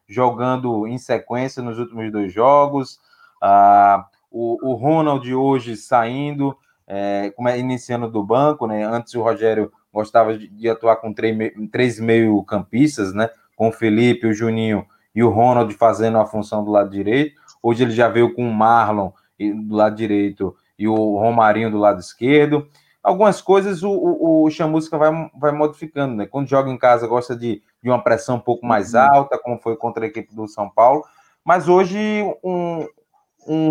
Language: Portuguese